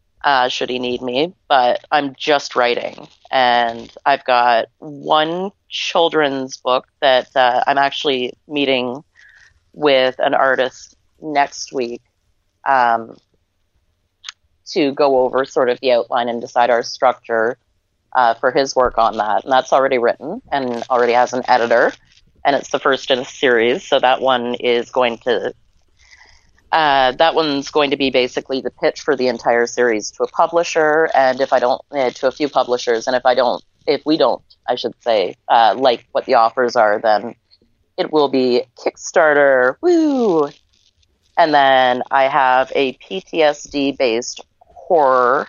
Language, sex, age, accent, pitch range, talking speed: English, female, 30-49, American, 120-140 Hz, 155 wpm